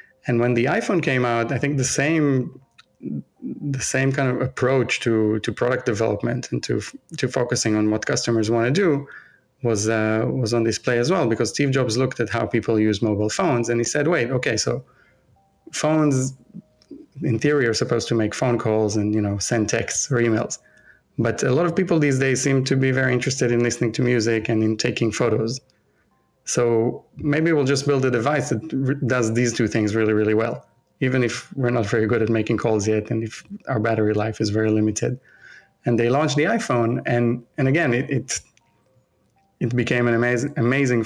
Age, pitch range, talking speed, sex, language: 30-49, 110-130 Hz, 200 wpm, male, English